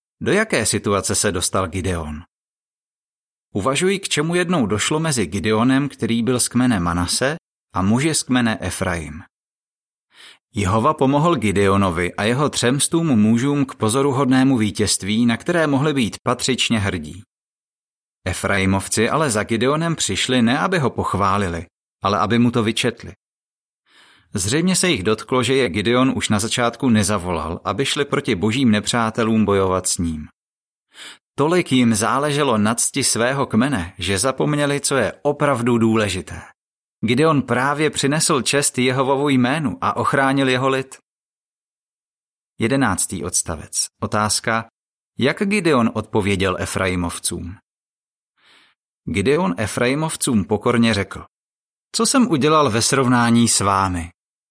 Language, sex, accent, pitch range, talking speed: Czech, male, native, 100-135 Hz, 125 wpm